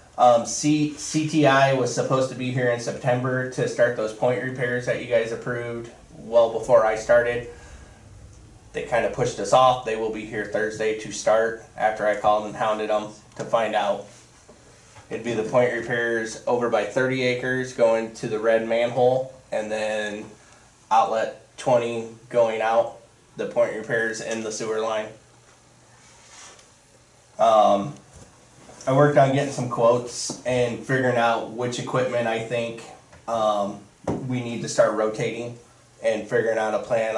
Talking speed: 155 wpm